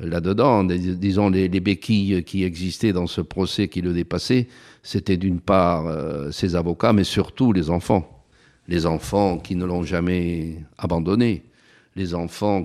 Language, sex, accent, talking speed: French, male, French, 155 wpm